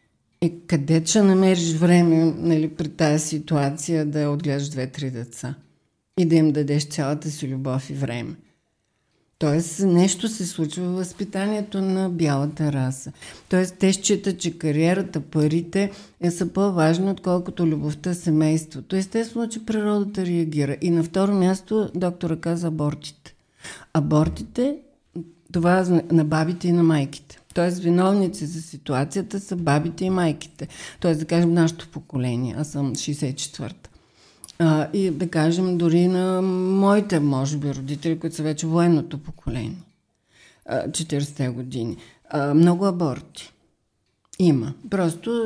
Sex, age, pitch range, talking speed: female, 50-69, 150-185 Hz, 130 wpm